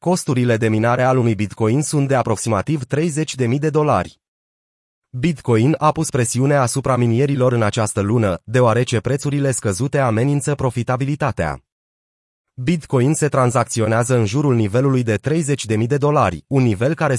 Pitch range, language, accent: 115-150 Hz, Romanian, native